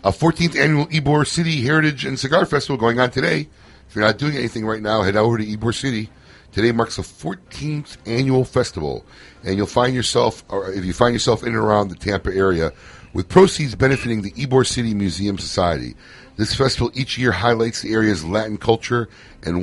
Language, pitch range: English, 95-130 Hz